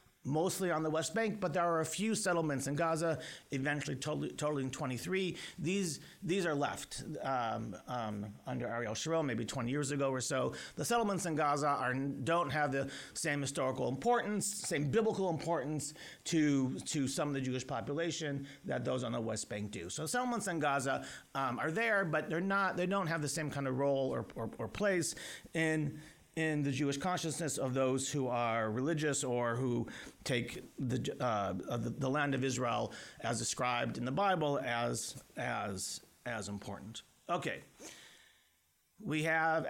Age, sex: 40-59, male